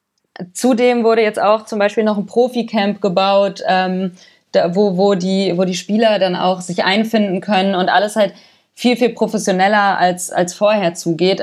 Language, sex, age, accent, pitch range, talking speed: German, female, 20-39, German, 190-230 Hz, 175 wpm